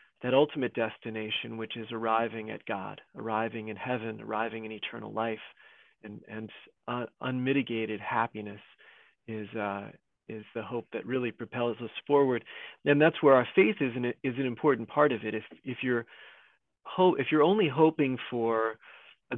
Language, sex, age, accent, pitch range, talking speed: English, male, 40-59, American, 115-150 Hz, 165 wpm